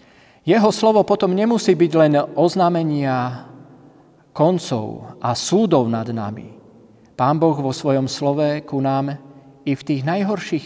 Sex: male